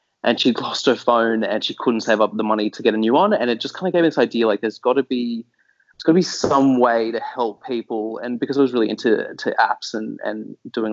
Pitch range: 105-125 Hz